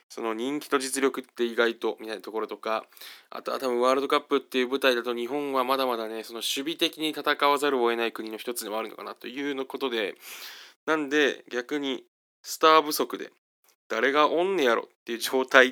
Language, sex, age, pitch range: Japanese, male, 20-39, 115-160 Hz